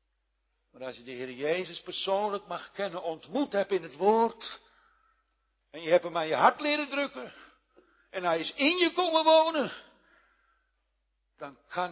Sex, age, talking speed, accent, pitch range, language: male, 60-79, 160 wpm, Dutch, 155-235 Hz, Dutch